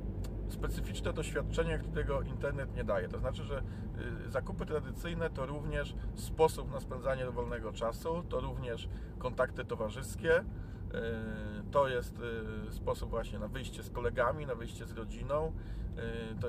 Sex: male